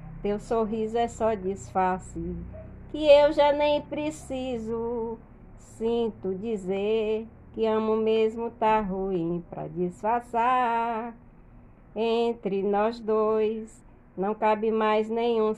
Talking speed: 100 wpm